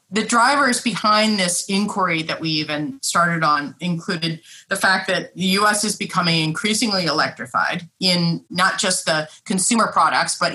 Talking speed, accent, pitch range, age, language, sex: 155 wpm, American, 170-210 Hz, 30-49, English, female